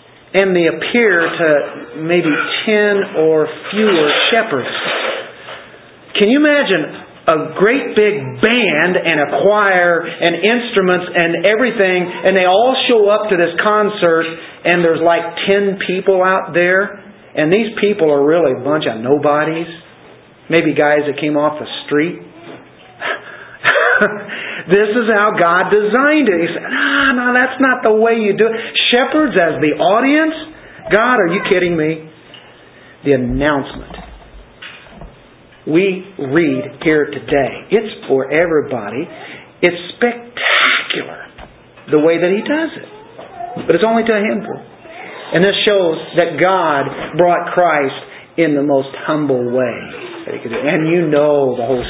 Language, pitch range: English, 150-210 Hz